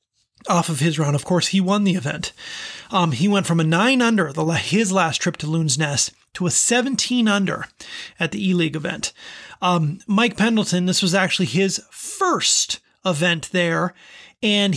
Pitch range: 170-215 Hz